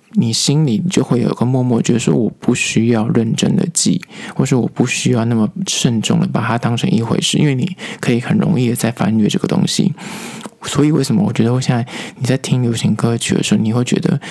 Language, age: Chinese, 20-39